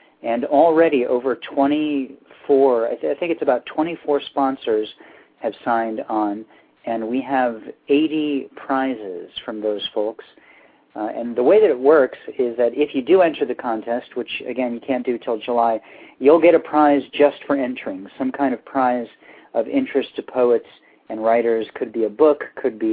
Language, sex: English, male